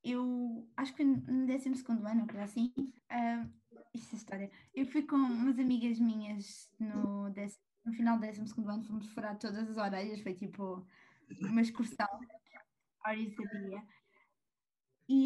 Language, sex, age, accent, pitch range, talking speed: Portuguese, female, 20-39, Brazilian, 220-280 Hz, 160 wpm